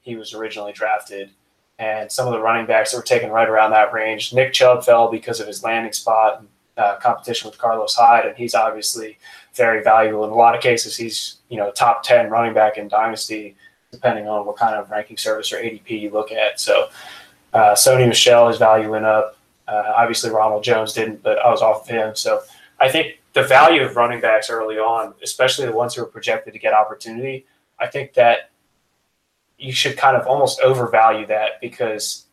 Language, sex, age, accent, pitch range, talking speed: English, male, 20-39, American, 110-120 Hz, 205 wpm